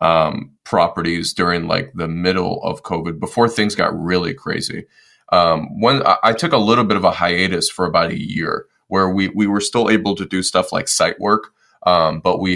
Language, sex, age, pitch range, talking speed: English, male, 20-39, 90-105 Hz, 205 wpm